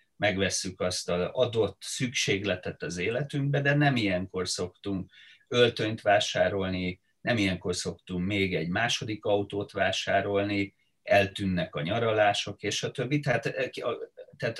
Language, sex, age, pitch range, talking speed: Hungarian, male, 30-49, 95-130 Hz, 115 wpm